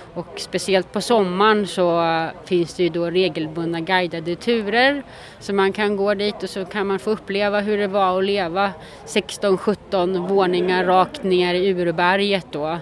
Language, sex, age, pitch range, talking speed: English, female, 30-49, 170-210 Hz, 165 wpm